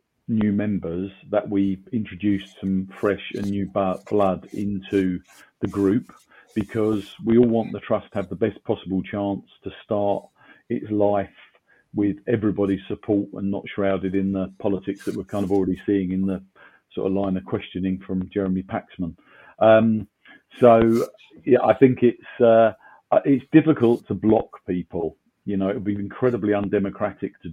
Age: 40-59